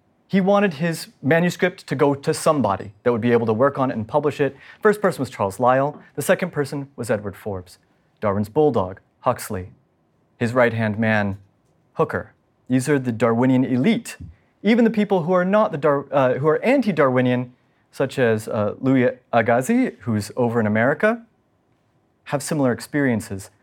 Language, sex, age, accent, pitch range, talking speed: English, male, 40-59, American, 115-180 Hz, 170 wpm